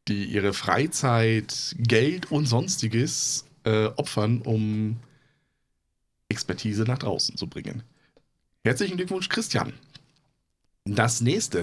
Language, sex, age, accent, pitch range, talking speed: German, male, 40-59, German, 105-140 Hz, 100 wpm